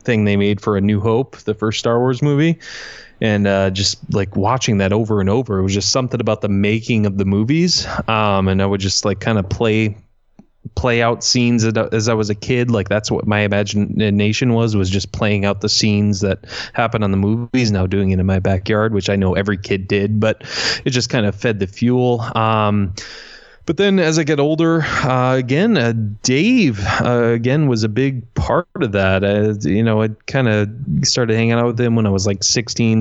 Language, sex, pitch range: English, male, 100-125 Hz